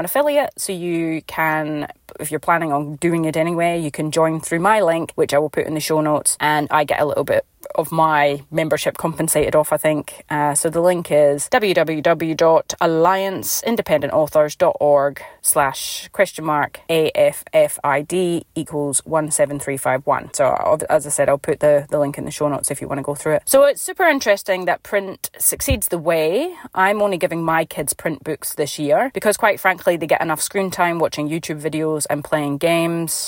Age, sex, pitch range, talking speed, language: 30-49, female, 155-180 Hz, 185 wpm, English